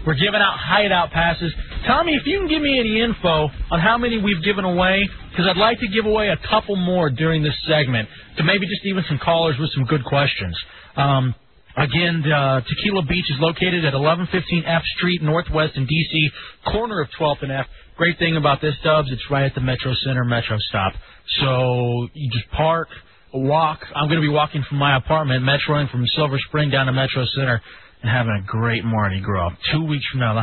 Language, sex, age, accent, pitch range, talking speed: English, male, 40-59, American, 130-170 Hz, 210 wpm